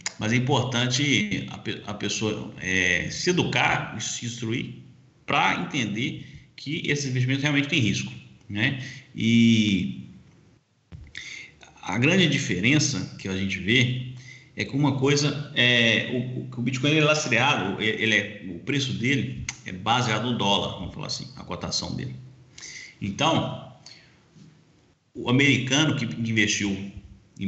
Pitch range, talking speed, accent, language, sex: 100-130 Hz, 135 wpm, Brazilian, Portuguese, male